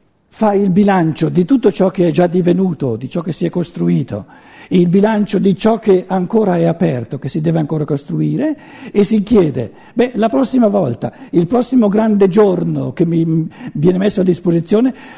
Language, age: Italian, 60-79